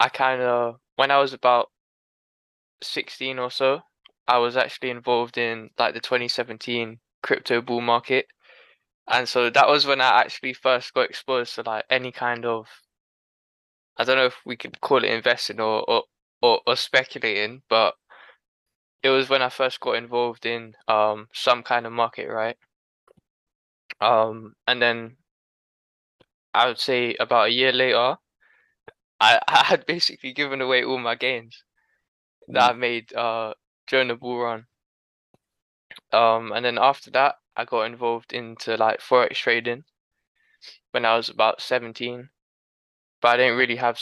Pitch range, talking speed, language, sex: 115-130 Hz, 155 wpm, English, male